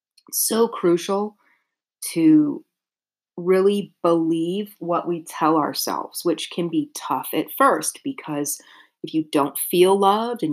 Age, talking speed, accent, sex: 30-49, 130 wpm, American, female